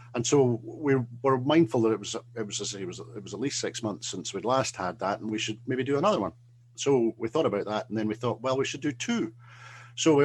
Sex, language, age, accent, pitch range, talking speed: male, English, 50-69, British, 105-120 Hz, 260 wpm